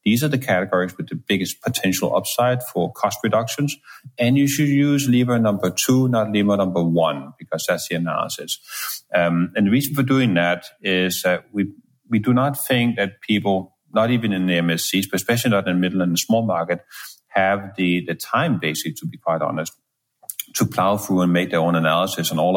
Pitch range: 90-120 Hz